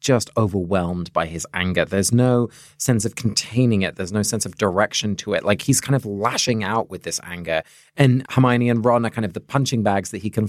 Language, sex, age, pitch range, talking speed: English, male, 20-39, 100-125 Hz, 230 wpm